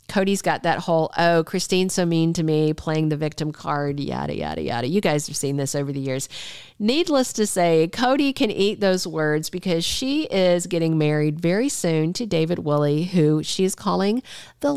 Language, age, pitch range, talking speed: English, 40-59, 155-220 Hz, 195 wpm